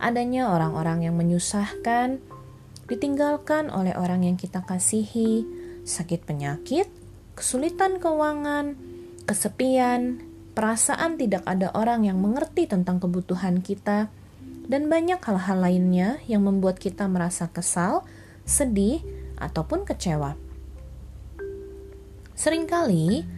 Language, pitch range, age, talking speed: Indonesian, 170-255 Hz, 20-39, 95 wpm